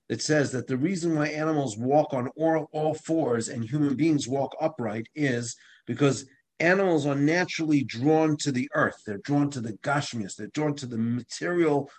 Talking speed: 180 wpm